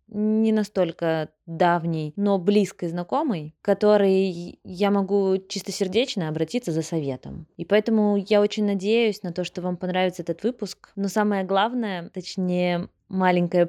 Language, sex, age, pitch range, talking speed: Russian, female, 20-39, 170-205 Hz, 135 wpm